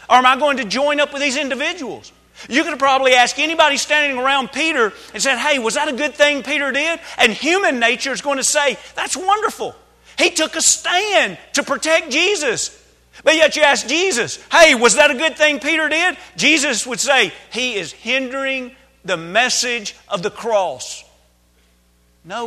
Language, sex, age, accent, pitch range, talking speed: English, male, 40-59, American, 205-290 Hz, 185 wpm